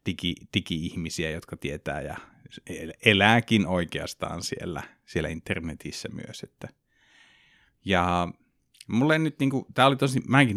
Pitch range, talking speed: 85-95 Hz, 120 wpm